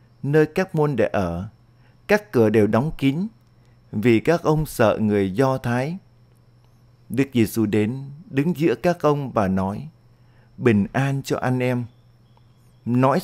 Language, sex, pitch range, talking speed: Vietnamese, male, 115-140 Hz, 145 wpm